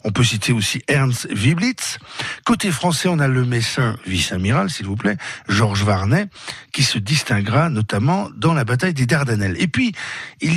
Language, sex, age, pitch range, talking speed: French, male, 50-69, 110-155 Hz, 170 wpm